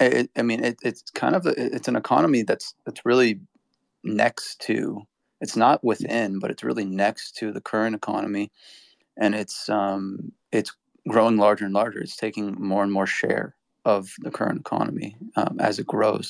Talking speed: 175 wpm